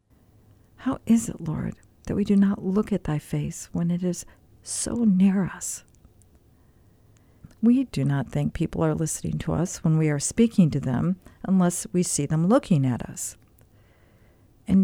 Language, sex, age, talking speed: English, female, 50-69, 165 wpm